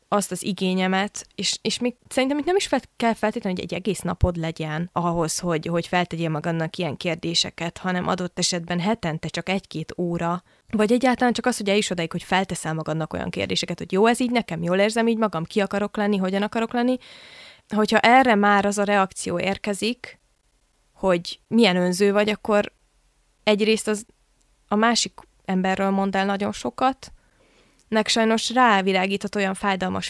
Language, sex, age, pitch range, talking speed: Hungarian, female, 20-39, 180-225 Hz, 170 wpm